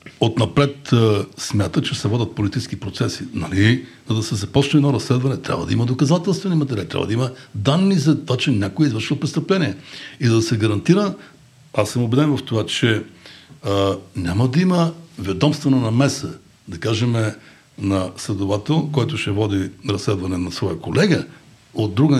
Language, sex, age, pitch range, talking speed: Bulgarian, male, 60-79, 105-150 Hz, 160 wpm